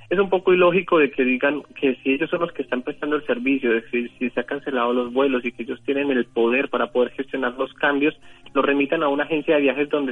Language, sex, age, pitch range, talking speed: Spanish, male, 30-49, 120-140 Hz, 260 wpm